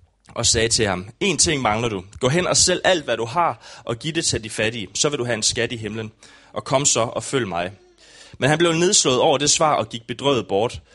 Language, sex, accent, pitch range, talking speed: English, male, Danish, 110-145 Hz, 260 wpm